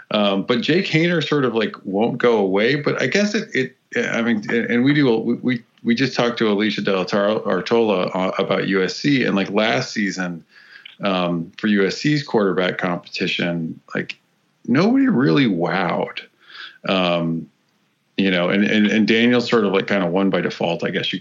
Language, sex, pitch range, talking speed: English, male, 95-125 Hz, 180 wpm